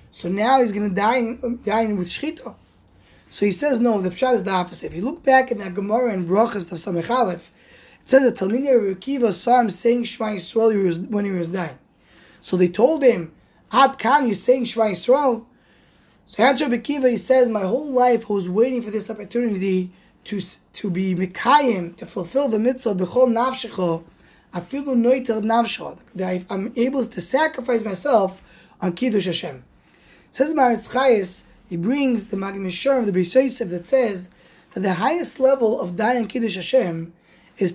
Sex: male